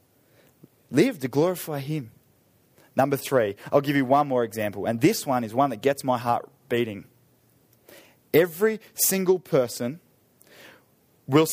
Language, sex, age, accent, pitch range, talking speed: English, male, 20-39, Australian, 145-235 Hz, 135 wpm